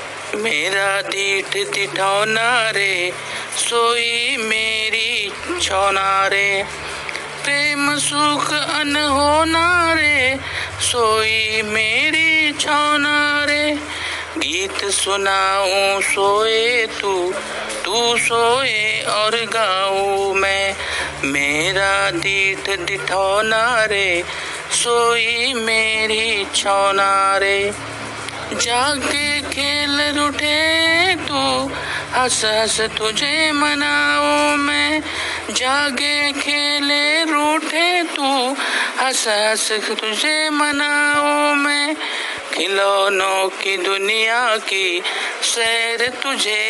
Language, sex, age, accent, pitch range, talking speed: Marathi, male, 50-69, native, 195-290 Hz, 75 wpm